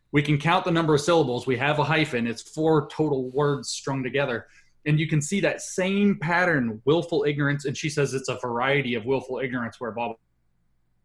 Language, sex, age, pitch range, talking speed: English, male, 30-49, 120-145 Hz, 200 wpm